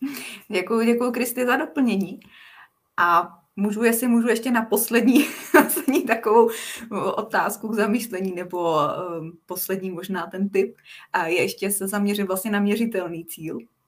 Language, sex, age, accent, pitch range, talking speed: Czech, female, 20-39, native, 185-215 Hz, 135 wpm